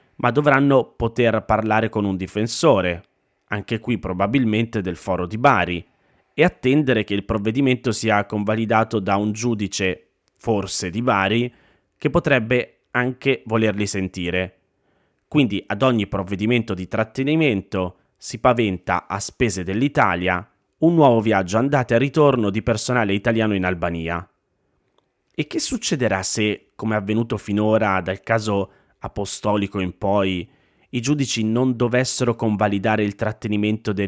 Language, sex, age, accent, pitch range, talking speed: Italian, male, 30-49, native, 100-125 Hz, 130 wpm